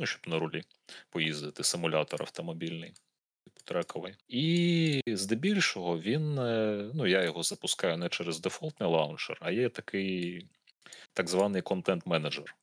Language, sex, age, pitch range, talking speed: Ukrainian, male, 30-49, 80-110 Hz, 120 wpm